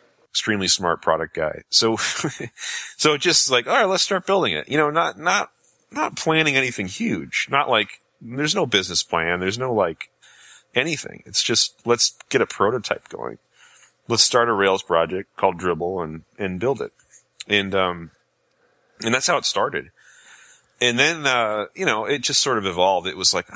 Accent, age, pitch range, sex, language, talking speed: American, 30-49, 85-120 Hz, male, English, 180 wpm